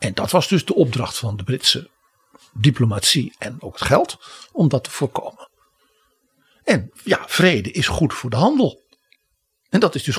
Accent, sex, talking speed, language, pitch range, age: Dutch, male, 175 wpm, Dutch, 115-160 Hz, 60-79